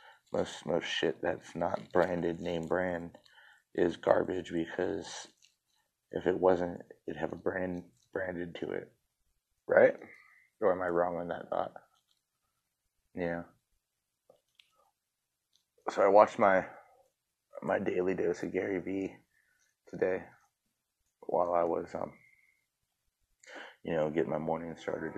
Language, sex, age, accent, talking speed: English, male, 30-49, American, 120 wpm